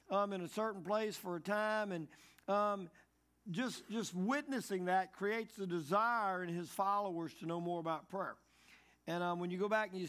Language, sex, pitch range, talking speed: English, male, 180-215 Hz, 195 wpm